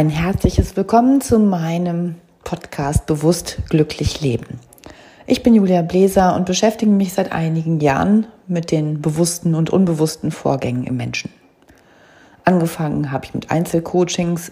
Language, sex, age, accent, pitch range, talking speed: German, female, 40-59, German, 155-185 Hz, 130 wpm